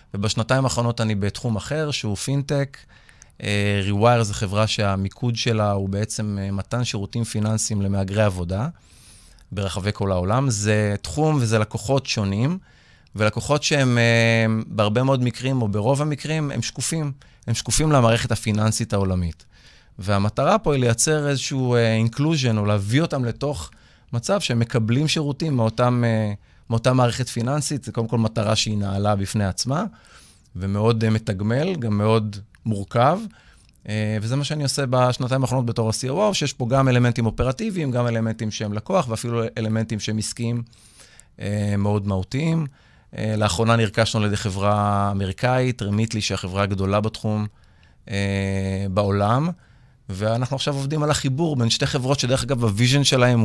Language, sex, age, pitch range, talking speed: Hebrew, male, 30-49, 105-130 Hz, 140 wpm